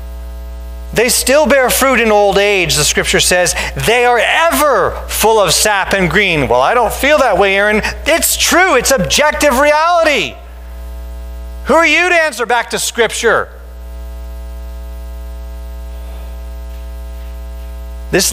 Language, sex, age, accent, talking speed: English, male, 40-59, American, 130 wpm